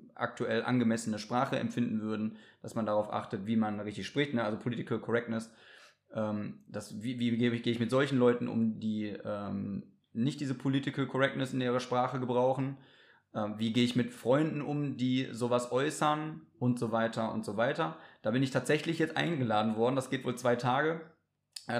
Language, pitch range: German, 110-135 Hz